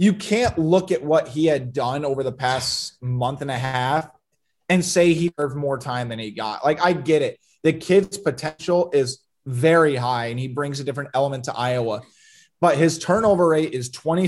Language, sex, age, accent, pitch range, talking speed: English, male, 20-39, American, 135-170 Hz, 200 wpm